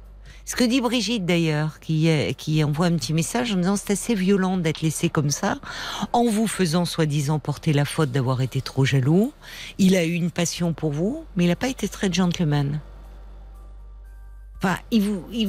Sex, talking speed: female, 200 wpm